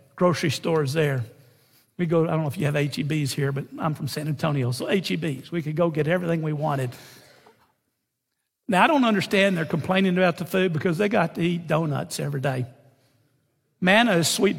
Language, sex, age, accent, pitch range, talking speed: English, male, 60-79, American, 160-205 Hz, 210 wpm